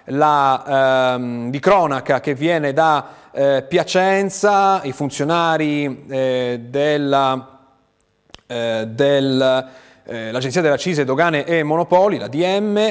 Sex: male